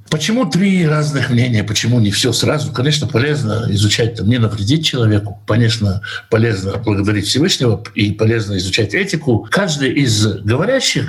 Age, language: 60-79, Russian